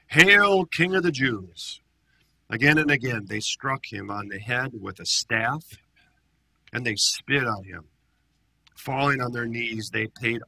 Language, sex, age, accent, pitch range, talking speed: English, male, 50-69, American, 105-130 Hz, 160 wpm